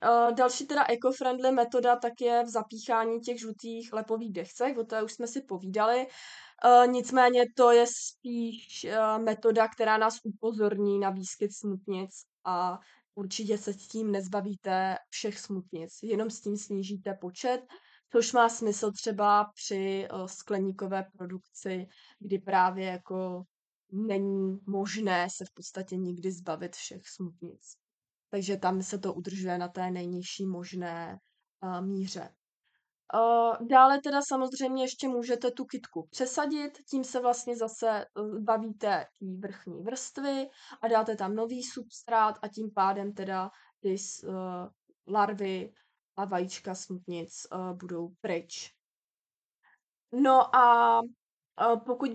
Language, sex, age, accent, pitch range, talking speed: Czech, female, 20-39, native, 190-240 Hz, 120 wpm